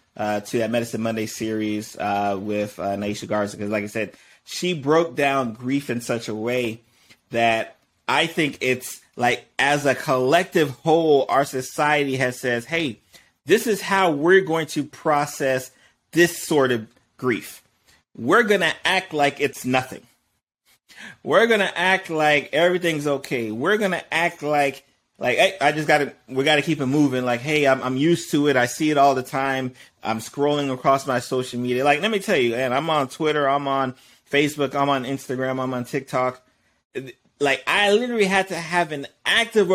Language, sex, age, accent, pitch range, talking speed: English, male, 30-49, American, 130-165 Hz, 185 wpm